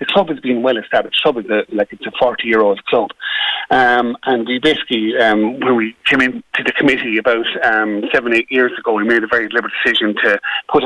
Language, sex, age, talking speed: English, male, 30-49, 220 wpm